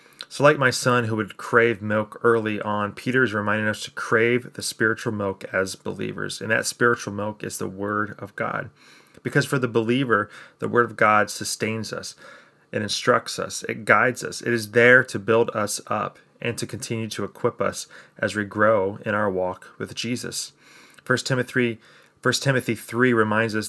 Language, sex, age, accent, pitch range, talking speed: English, male, 30-49, American, 105-125 Hz, 185 wpm